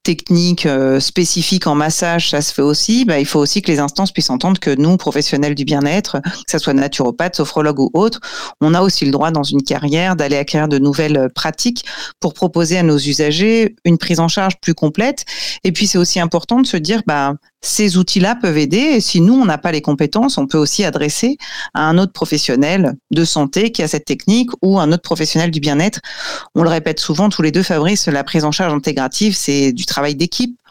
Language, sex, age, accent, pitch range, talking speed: French, female, 40-59, French, 150-190 Hz, 220 wpm